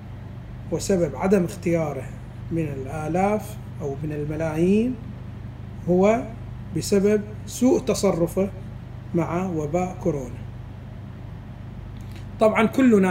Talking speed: 80 wpm